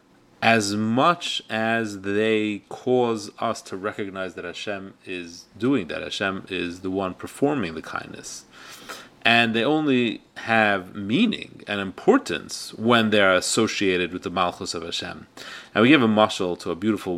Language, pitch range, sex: English, 95-125 Hz, male